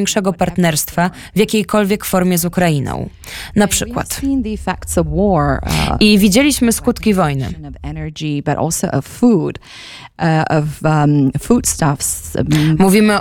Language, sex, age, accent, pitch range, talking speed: Polish, female, 20-39, native, 155-210 Hz, 65 wpm